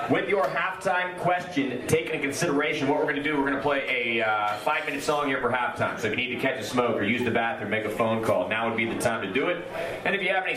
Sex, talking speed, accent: male, 295 wpm, American